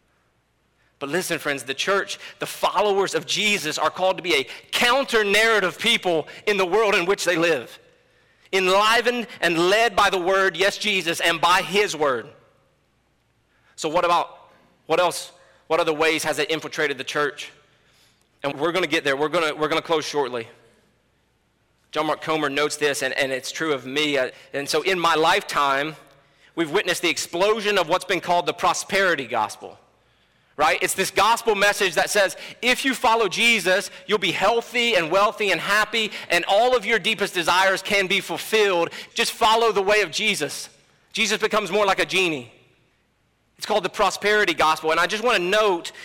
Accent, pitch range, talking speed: American, 160-210 Hz, 175 wpm